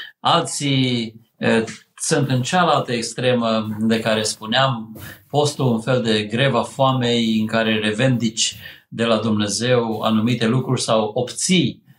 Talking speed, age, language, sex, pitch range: 125 wpm, 50-69, Romanian, male, 110-140 Hz